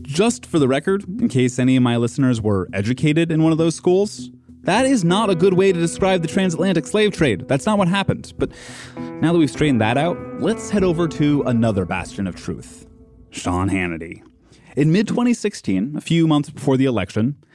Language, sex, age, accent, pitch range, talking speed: English, male, 20-39, American, 115-170 Hz, 200 wpm